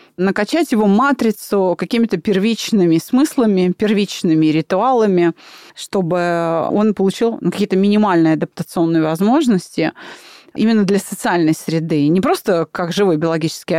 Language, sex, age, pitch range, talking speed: Russian, female, 30-49, 170-230 Hz, 105 wpm